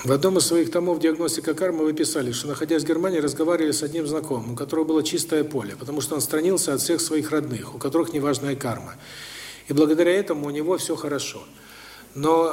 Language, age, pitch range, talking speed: Russian, 50-69, 135-170 Hz, 200 wpm